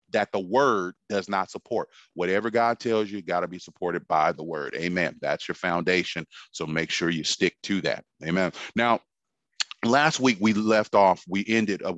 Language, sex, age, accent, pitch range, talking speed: English, male, 30-49, American, 90-110 Hz, 190 wpm